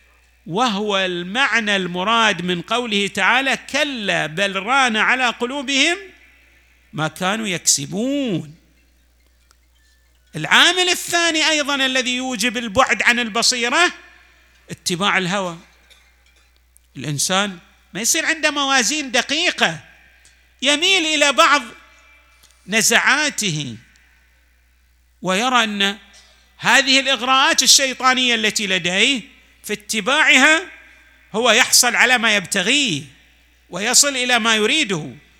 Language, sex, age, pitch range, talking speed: Arabic, male, 50-69, 175-265 Hz, 90 wpm